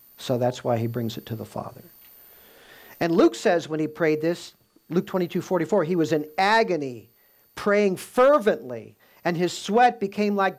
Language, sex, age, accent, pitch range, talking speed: English, male, 50-69, American, 125-180 Hz, 170 wpm